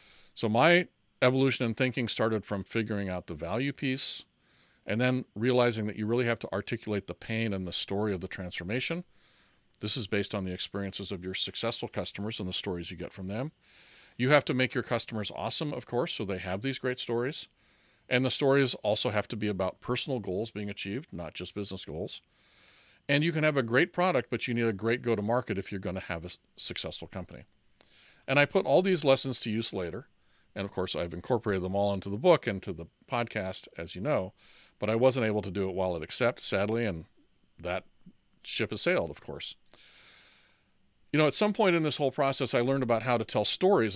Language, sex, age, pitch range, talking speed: English, male, 40-59, 95-125 Hz, 215 wpm